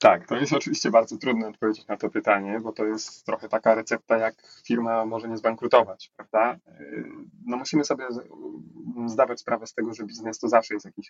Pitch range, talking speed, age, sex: 105-120 Hz, 190 wpm, 30-49, male